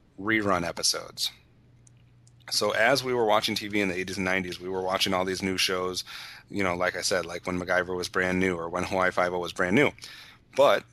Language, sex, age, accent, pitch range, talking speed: English, male, 30-49, American, 90-110 Hz, 215 wpm